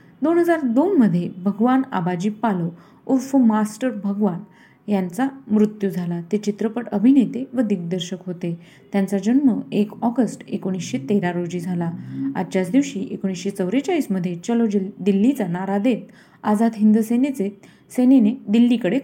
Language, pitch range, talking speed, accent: Marathi, 190-255 Hz, 115 wpm, native